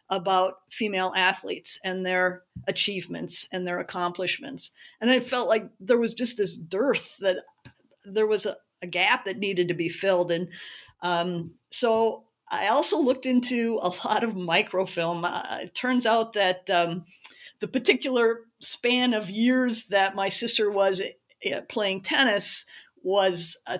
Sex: female